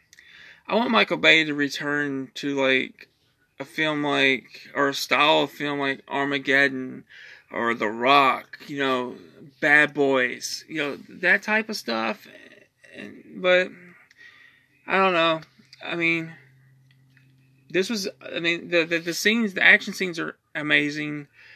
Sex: male